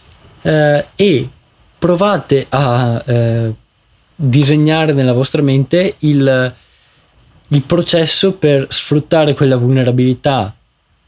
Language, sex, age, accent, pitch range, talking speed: Italian, male, 20-39, native, 125-160 Hz, 85 wpm